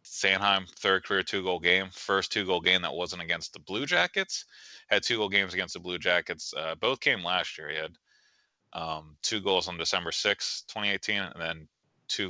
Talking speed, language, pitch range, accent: 190 wpm, English, 80-115 Hz, American